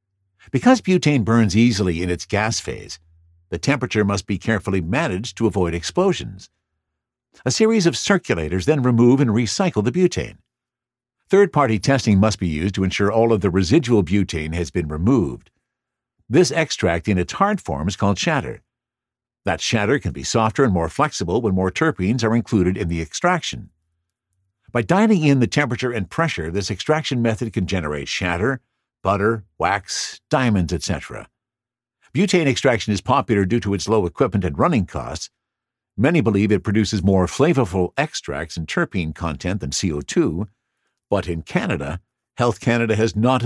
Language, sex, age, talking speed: English, male, 60-79, 160 wpm